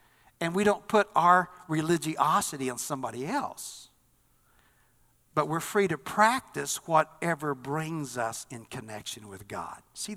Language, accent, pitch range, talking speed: English, American, 135-175 Hz, 130 wpm